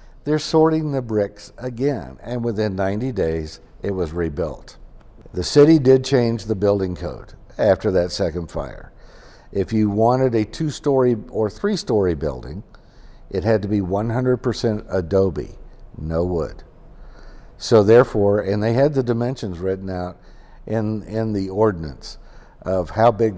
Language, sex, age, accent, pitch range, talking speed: English, male, 60-79, American, 95-120 Hz, 140 wpm